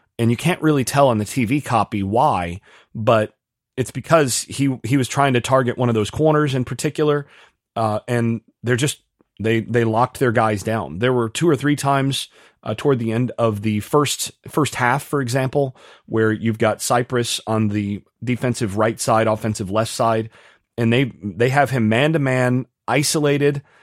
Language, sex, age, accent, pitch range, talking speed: English, male, 30-49, American, 110-130 Hz, 185 wpm